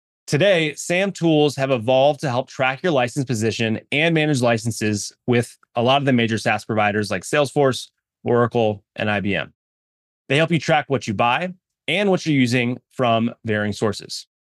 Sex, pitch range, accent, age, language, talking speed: male, 120-160 Hz, American, 30-49, English, 170 wpm